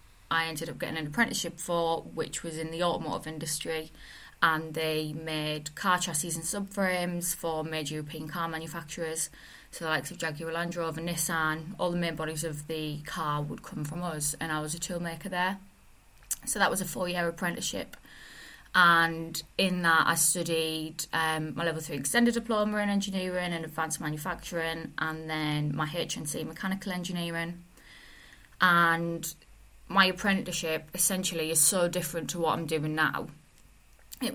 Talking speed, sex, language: 160 wpm, female, English